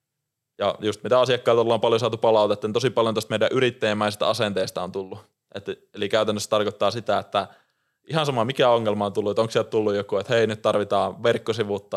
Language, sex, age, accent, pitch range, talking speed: Finnish, male, 20-39, native, 105-140 Hz, 195 wpm